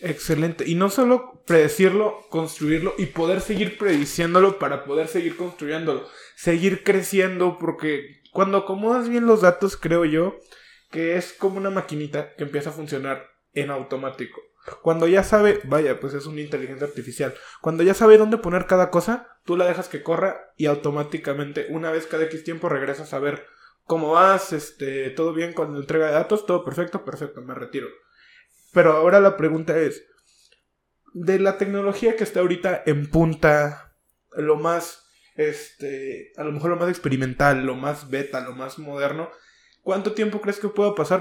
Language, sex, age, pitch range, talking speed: Spanish, male, 20-39, 145-190 Hz, 165 wpm